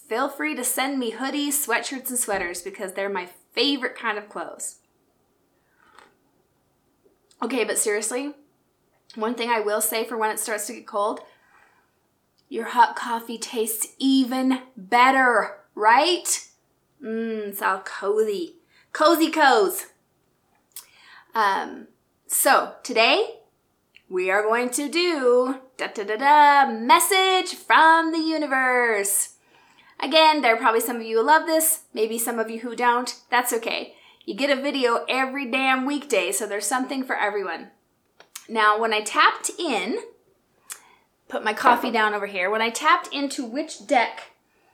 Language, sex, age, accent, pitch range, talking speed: English, female, 20-39, American, 220-305 Hz, 140 wpm